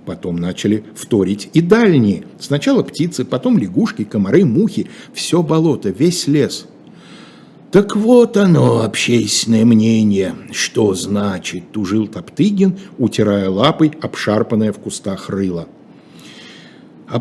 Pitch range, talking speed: 110-165 Hz, 110 wpm